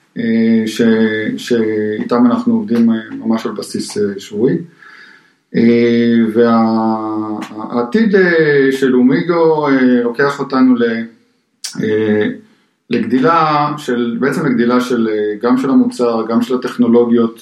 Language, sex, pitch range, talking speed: Hebrew, male, 115-145 Hz, 85 wpm